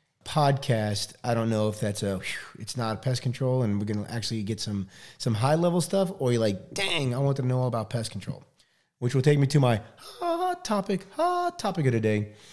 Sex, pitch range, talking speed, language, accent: male, 110-130 Hz, 220 wpm, English, American